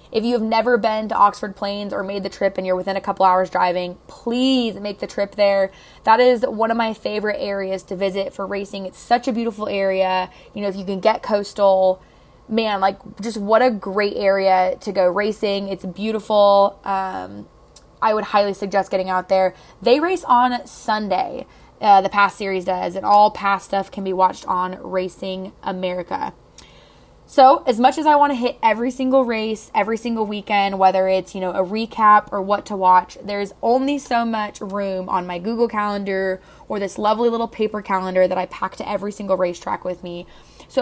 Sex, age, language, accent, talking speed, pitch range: female, 20-39, English, American, 195 wpm, 190-225 Hz